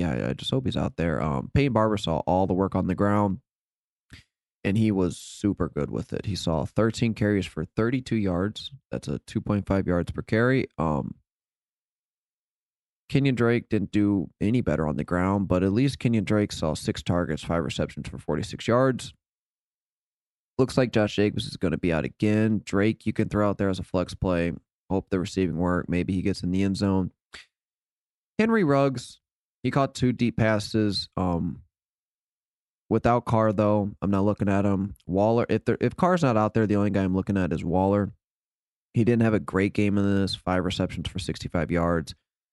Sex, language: male, English